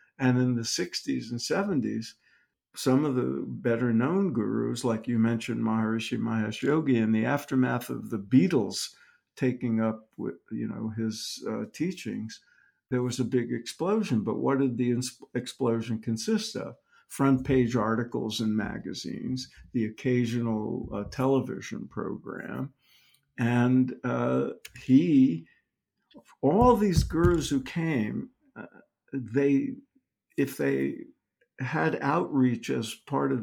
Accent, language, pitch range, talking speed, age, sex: American, English, 115-165 Hz, 120 wpm, 50-69, male